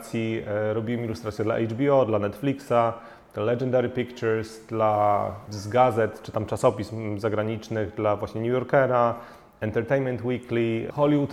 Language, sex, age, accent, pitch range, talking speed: Polish, male, 30-49, native, 110-130 Hz, 115 wpm